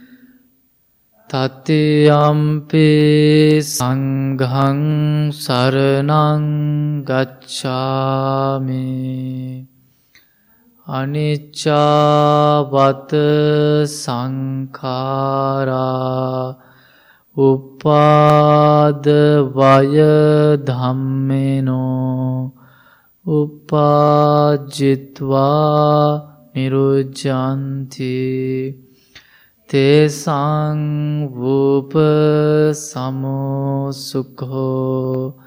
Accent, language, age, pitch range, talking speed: Indian, English, 20-39, 130-150 Hz, 30 wpm